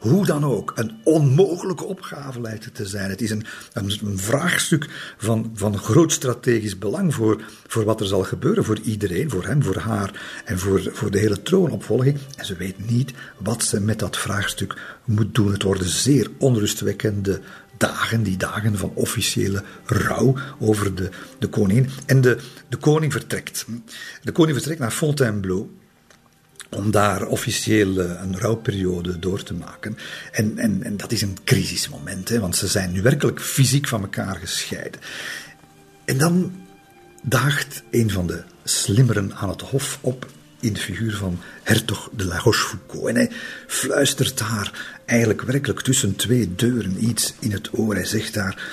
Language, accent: Dutch, Belgian